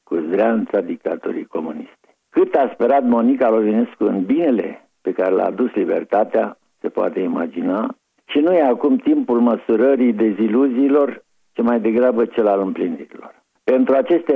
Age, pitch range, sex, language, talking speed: 60-79, 105-145 Hz, male, Romanian, 140 wpm